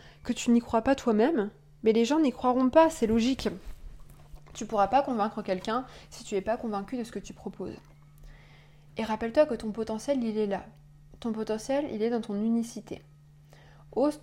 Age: 20-39